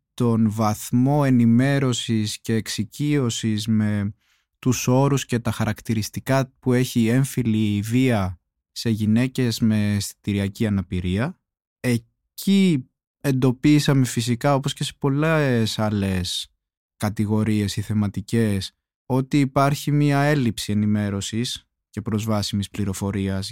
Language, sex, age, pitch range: Greek, male, 20-39, 105-135 Hz